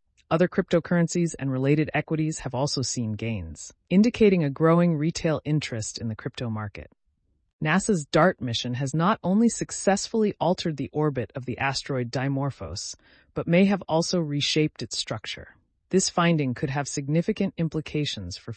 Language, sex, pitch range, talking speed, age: English, female, 115-160 Hz, 150 wpm, 30-49